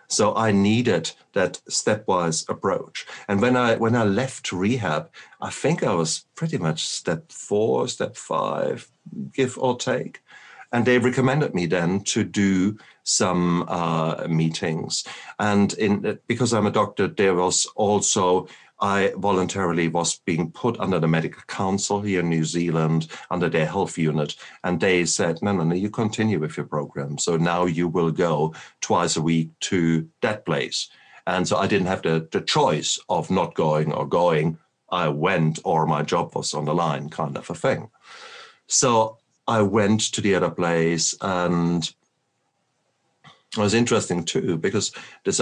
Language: English